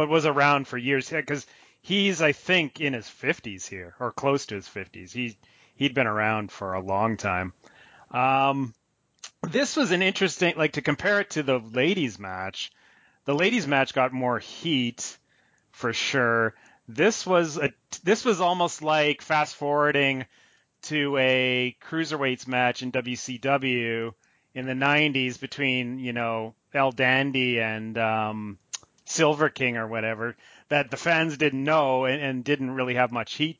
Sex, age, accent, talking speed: male, 30-49, American, 155 wpm